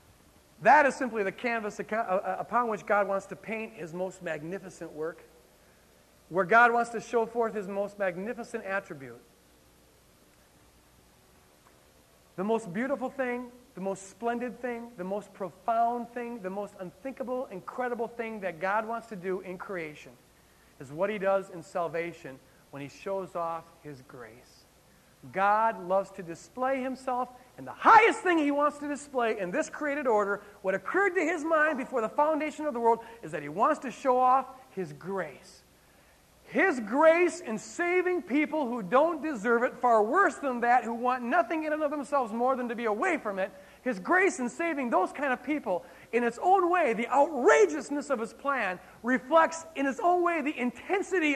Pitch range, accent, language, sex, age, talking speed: 190-280 Hz, American, English, male, 40-59, 175 wpm